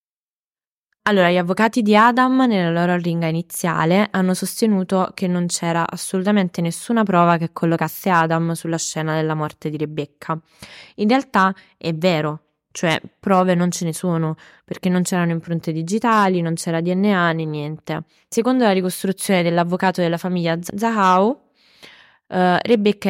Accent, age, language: native, 20-39, Italian